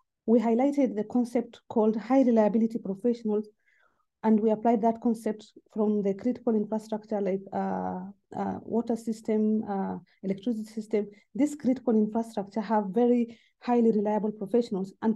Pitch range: 210-240 Hz